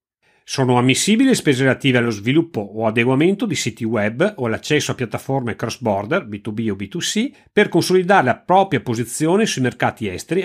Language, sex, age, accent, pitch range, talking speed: Italian, male, 40-59, native, 110-165 Hz, 160 wpm